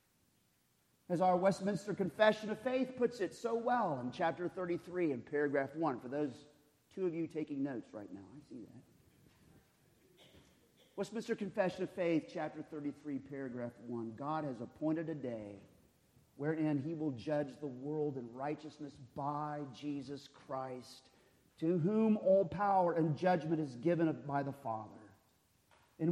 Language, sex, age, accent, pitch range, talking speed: English, male, 40-59, American, 135-180 Hz, 145 wpm